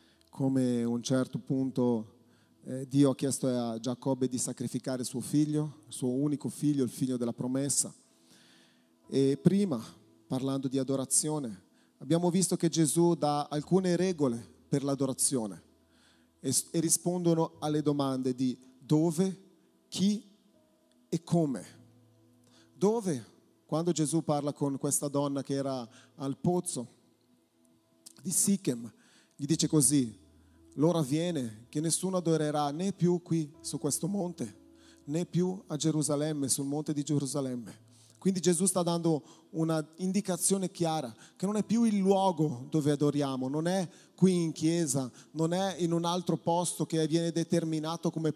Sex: male